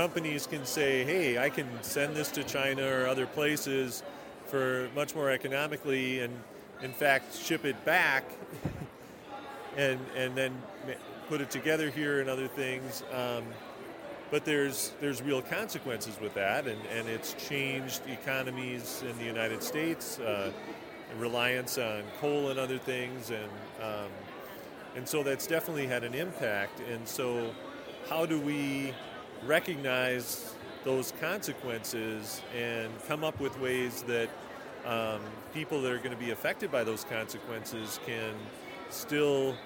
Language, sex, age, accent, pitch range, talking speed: English, male, 40-59, American, 120-140 Hz, 140 wpm